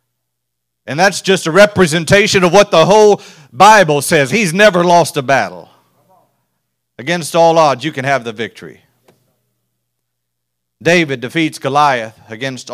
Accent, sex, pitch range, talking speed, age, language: American, male, 150-200 Hz, 130 wpm, 40-59, English